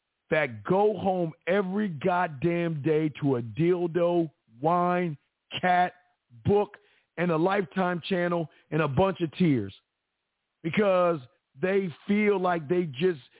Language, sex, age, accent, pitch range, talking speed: English, male, 50-69, American, 150-185 Hz, 120 wpm